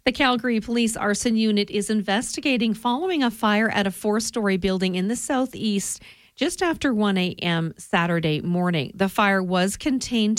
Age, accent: 40-59, American